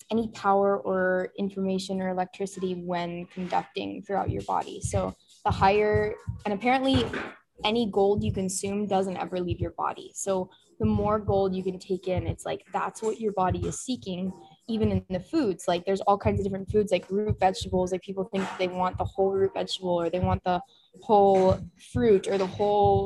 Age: 10-29